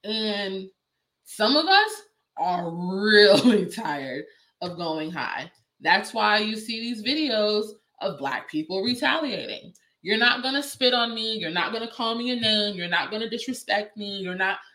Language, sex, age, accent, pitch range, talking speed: English, female, 20-39, American, 200-265 Hz, 175 wpm